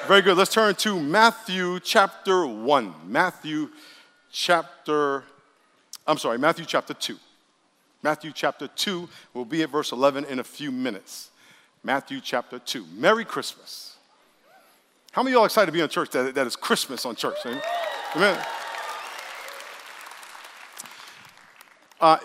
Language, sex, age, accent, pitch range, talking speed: English, male, 50-69, American, 150-195 Hz, 135 wpm